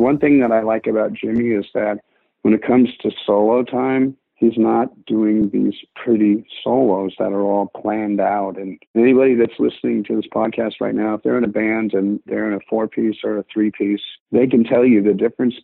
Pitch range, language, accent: 100-115 Hz, English, American